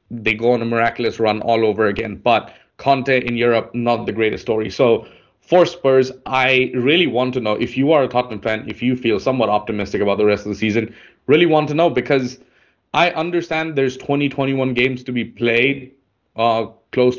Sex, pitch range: male, 110-130 Hz